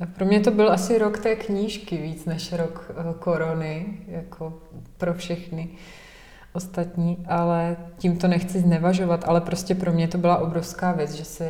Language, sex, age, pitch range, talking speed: Czech, female, 30-49, 160-180 Hz, 160 wpm